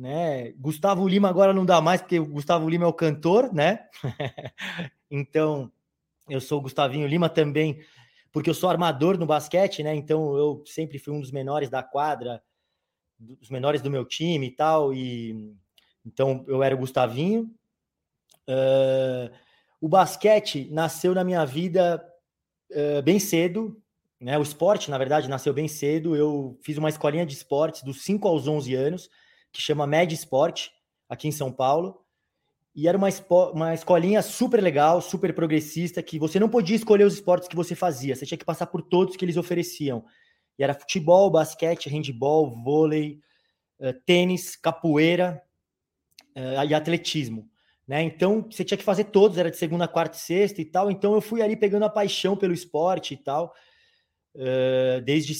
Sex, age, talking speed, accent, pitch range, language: male, 20-39, 165 wpm, Brazilian, 145-185 Hz, Portuguese